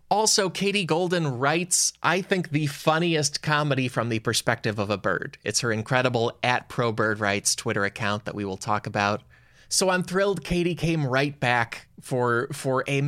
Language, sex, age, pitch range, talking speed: English, male, 20-39, 125-180 Hz, 170 wpm